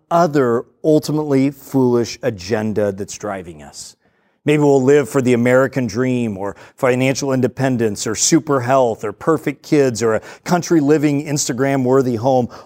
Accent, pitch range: American, 110-155 Hz